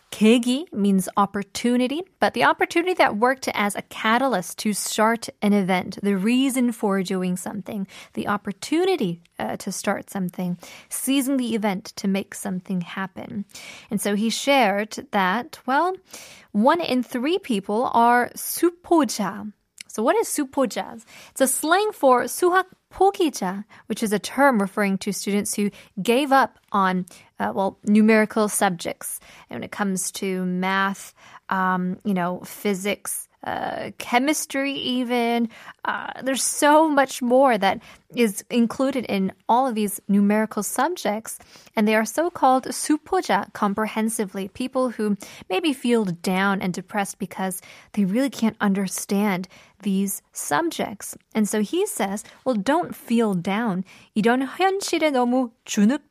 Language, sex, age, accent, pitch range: Korean, female, 20-39, American, 200-260 Hz